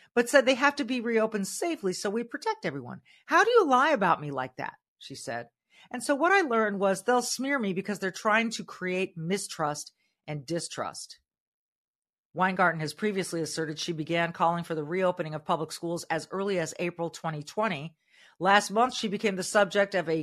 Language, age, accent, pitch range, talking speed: English, 40-59, American, 155-220 Hz, 195 wpm